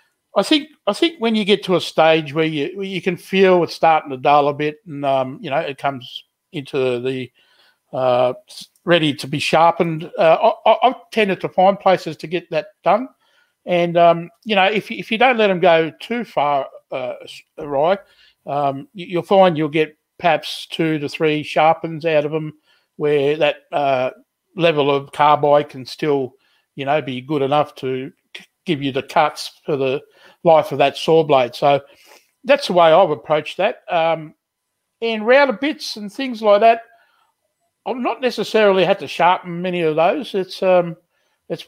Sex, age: male, 60-79